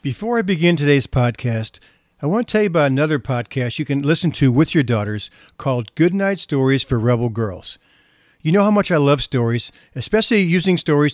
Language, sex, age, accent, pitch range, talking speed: English, male, 50-69, American, 125-160 Hz, 200 wpm